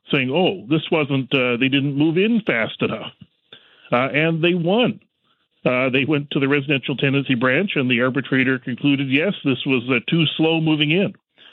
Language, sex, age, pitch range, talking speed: English, male, 40-59, 120-155 Hz, 175 wpm